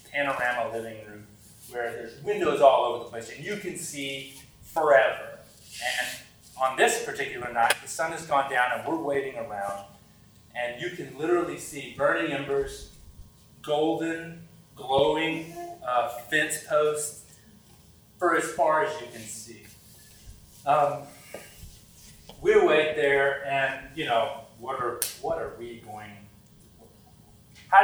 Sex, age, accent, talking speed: male, 30-49, American, 135 wpm